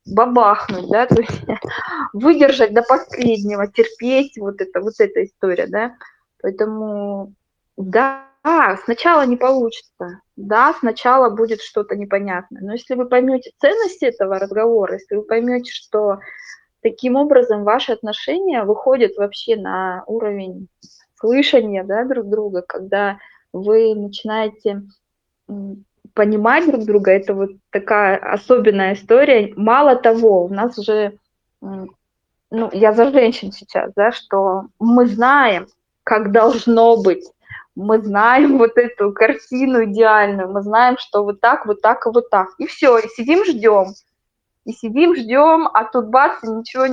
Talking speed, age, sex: 130 wpm, 20-39, female